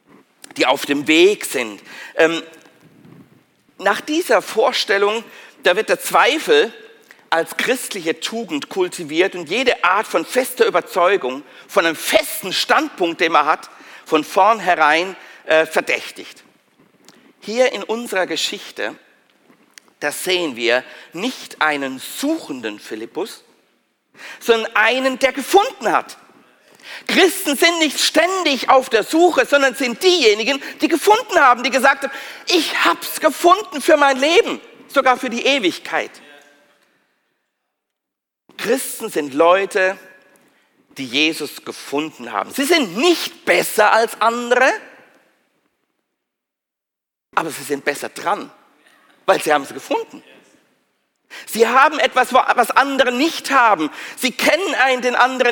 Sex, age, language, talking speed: male, 50-69, German, 120 wpm